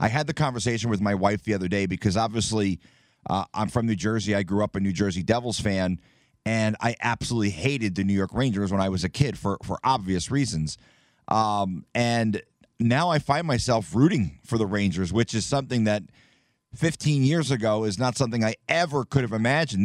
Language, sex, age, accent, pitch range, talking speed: English, male, 30-49, American, 100-120 Hz, 205 wpm